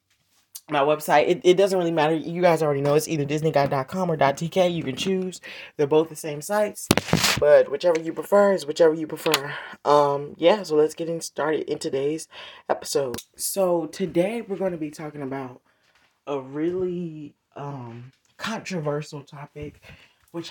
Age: 20-39